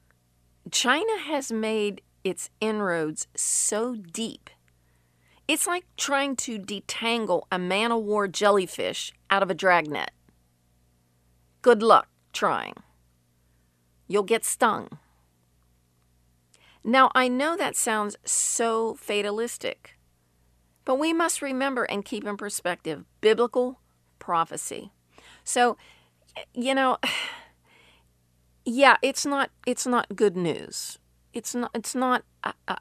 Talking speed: 105 wpm